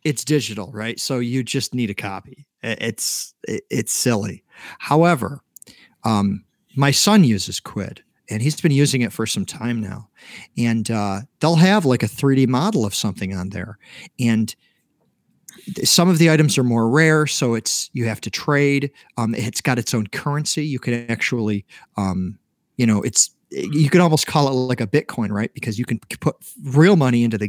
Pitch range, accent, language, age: 110-155 Hz, American, English, 40-59